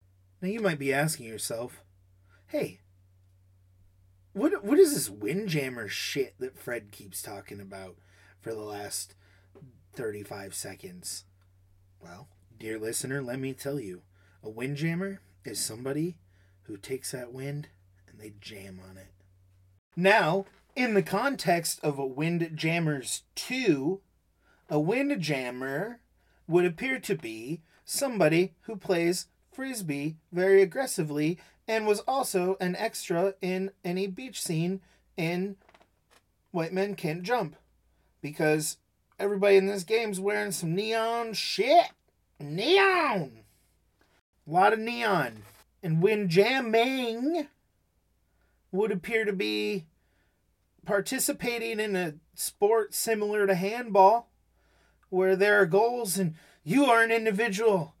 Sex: male